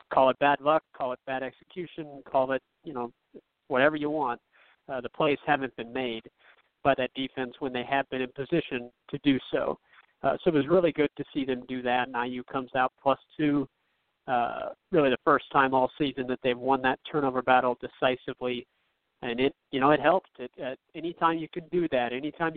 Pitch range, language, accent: 130-160 Hz, English, American